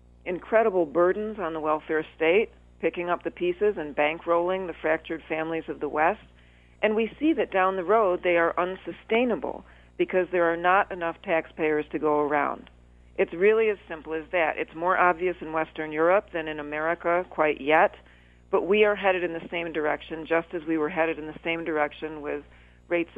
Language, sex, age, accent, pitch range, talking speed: English, female, 50-69, American, 155-195 Hz, 190 wpm